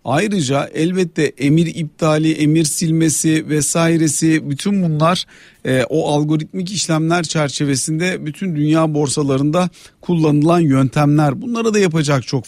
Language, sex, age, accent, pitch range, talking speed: Turkish, male, 50-69, native, 145-175 Hz, 110 wpm